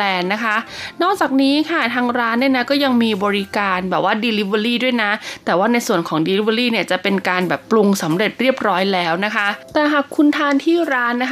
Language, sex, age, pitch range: Thai, female, 20-39, 190-245 Hz